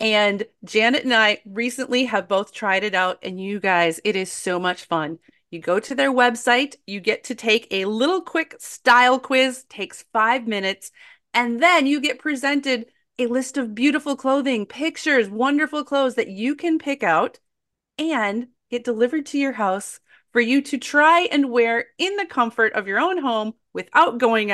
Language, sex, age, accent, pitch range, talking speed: English, female, 30-49, American, 200-275 Hz, 180 wpm